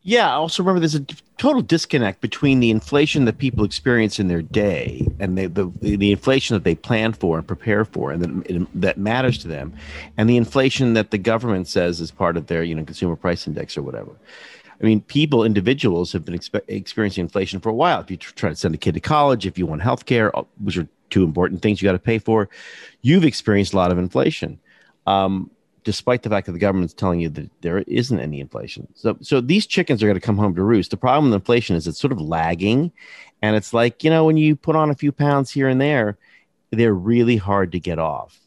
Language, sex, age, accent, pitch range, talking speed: English, male, 40-59, American, 90-125 Hz, 230 wpm